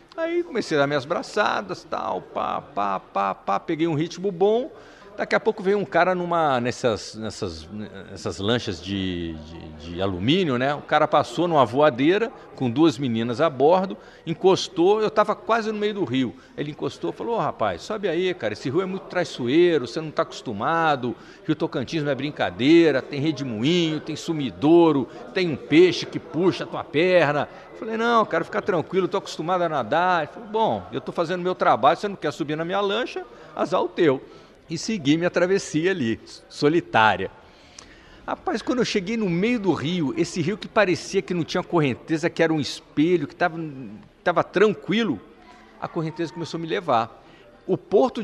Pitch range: 140-195 Hz